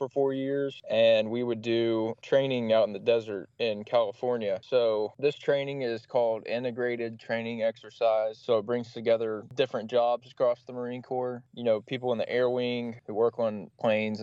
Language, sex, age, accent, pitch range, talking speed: English, male, 20-39, American, 110-125 Hz, 175 wpm